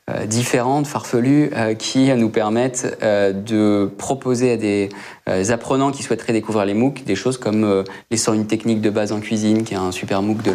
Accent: French